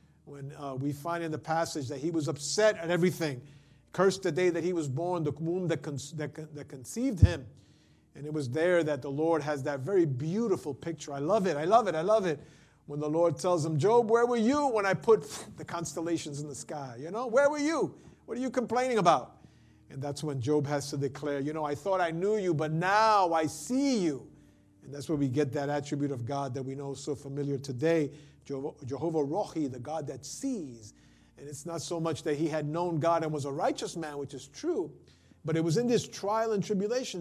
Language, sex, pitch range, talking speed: English, male, 145-185 Hz, 225 wpm